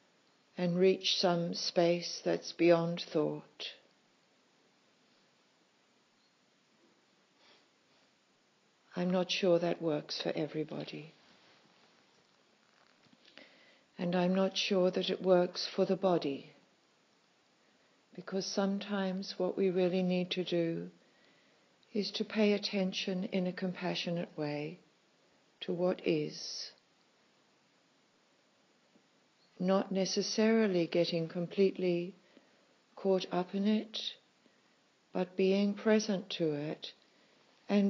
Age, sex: 60-79, female